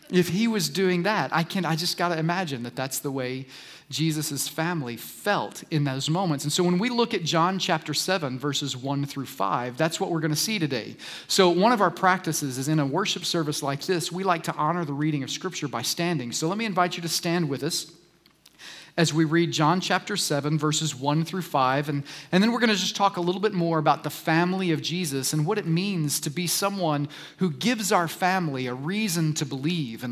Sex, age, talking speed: male, 40-59, 230 wpm